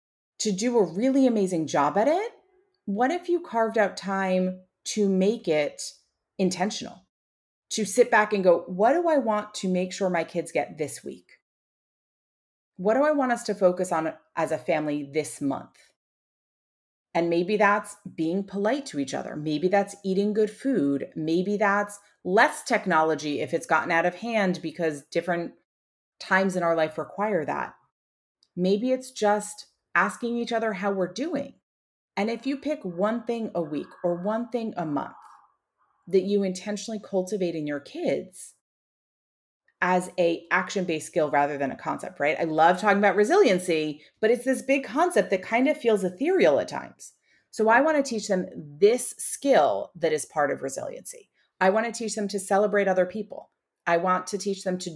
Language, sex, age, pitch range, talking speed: English, female, 30-49, 175-220 Hz, 175 wpm